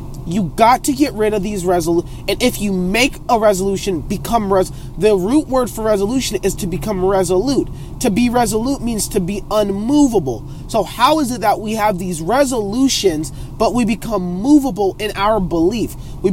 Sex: male